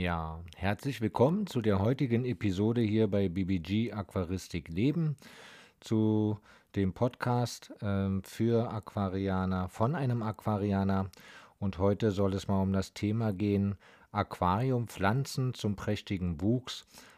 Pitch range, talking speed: 100-120 Hz, 115 wpm